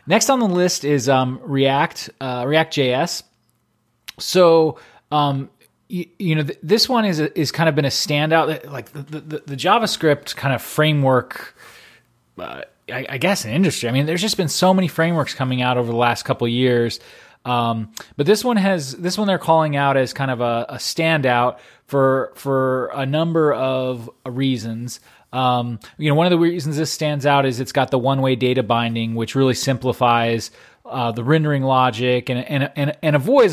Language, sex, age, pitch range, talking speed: English, male, 20-39, 125-155 Hz, 190 wpm